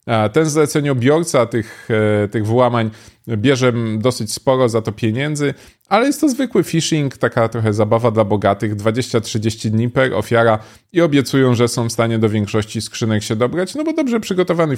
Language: Polish